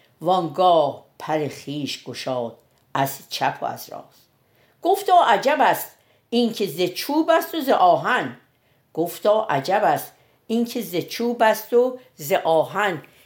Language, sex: Persian, female